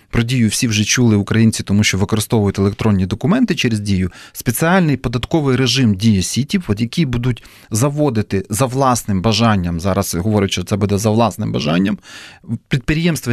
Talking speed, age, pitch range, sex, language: 150 wpm, 30-49, 105-135 Hz, male, English